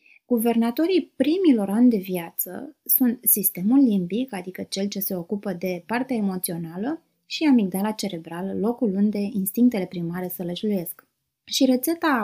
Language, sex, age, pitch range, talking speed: Romanian, female, 20-39, 185-245 Hz, 125 wpm